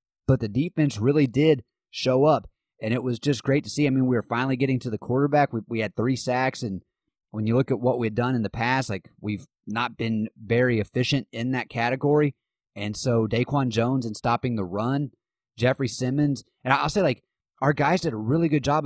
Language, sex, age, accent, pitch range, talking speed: English, male, 30-49, American, 115-140 Hz, 220 wpm